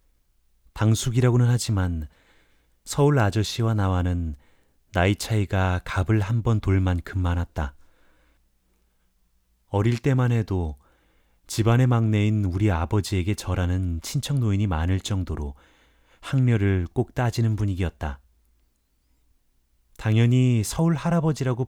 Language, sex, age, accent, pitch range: Korean, male, 30-49, native, 70-115 Hz